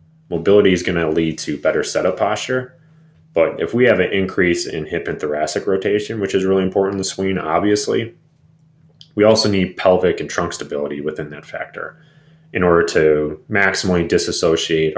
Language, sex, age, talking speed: English, male, 30-49, 170 wpm